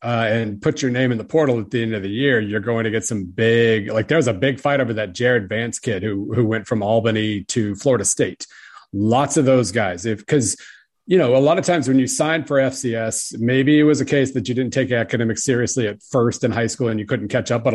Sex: male